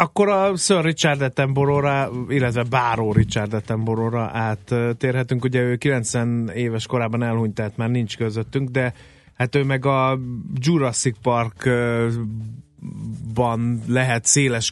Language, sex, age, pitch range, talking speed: Hungarian, male, 30-49, 110-130 Hz, 120 wpm